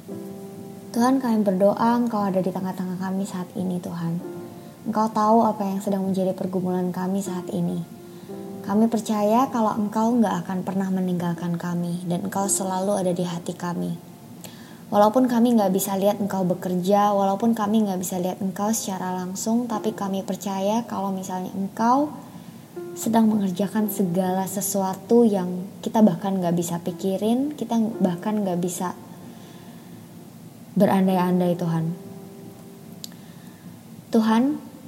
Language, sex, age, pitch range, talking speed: Indonesian, male, 20-39, 185-215 Hz, 130 wpm